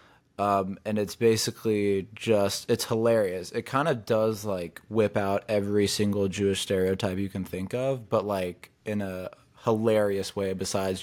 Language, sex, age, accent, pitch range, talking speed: English, male, 20-39, American, 100-115 Hz, 160 wpm